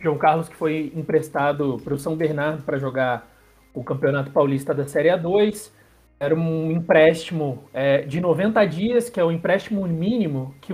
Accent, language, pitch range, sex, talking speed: Brazilian, Portuguese, 155-215 Hz, male, 160 wpm